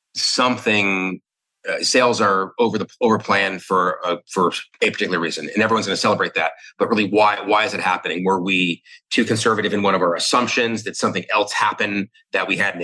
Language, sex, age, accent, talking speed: English, male, 30-49, American, 200 wpm